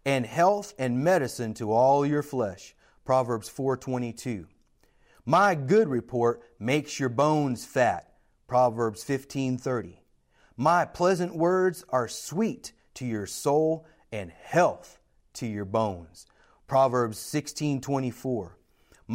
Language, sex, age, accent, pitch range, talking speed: English, male, 30-49, American, 115-150 Hz, 105 wpm